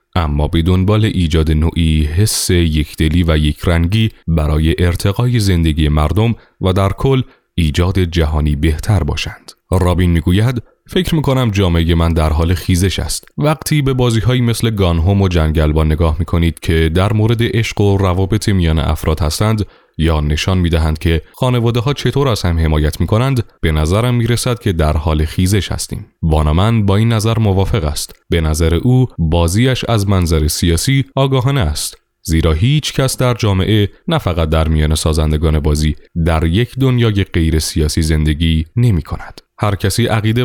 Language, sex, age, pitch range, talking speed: Persian, male, 30-49, 80-115 Hz, 165 wpm